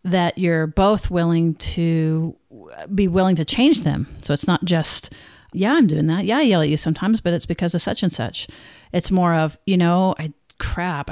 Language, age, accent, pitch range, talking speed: English, 40-59, American, 155-185 Hz, 205 wpm